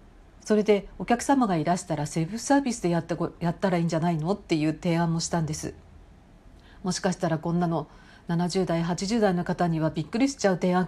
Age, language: 50-69, Japanese